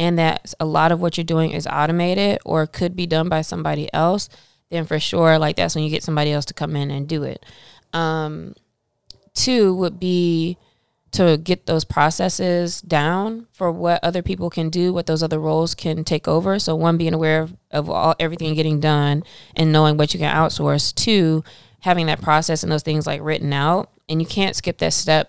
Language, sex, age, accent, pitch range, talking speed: English, female, 20-39, American, 150-170 Hz, 205 wpm